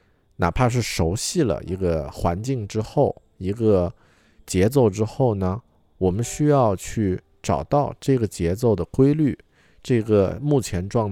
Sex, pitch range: male, 85-110 Hz